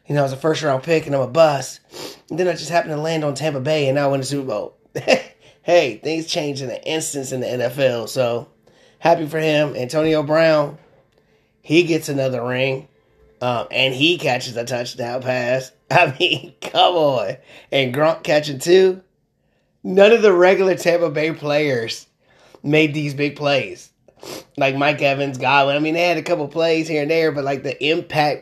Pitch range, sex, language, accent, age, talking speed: 135-170 Hz, male, English, American, 30-49, 190 wpm